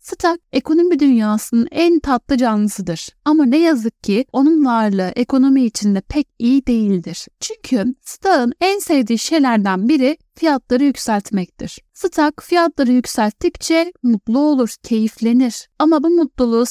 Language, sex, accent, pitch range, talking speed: Turkish, female, native, 230-300 Hz, 120 wpm